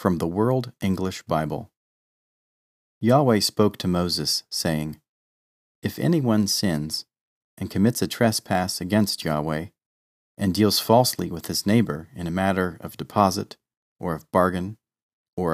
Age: 40-59